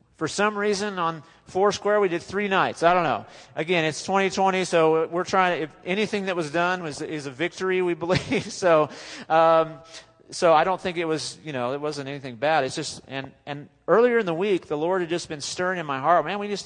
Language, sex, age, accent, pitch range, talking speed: English, male, 40-59, American, 140-180 Hz, 230 wpm